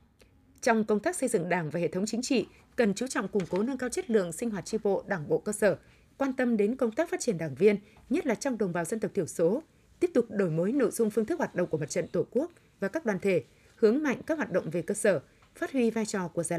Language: Vietnamese